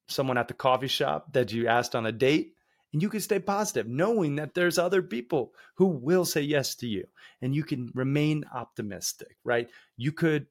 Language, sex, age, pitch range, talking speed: English, male, 30-49, 125-170 Hz, 200 wpm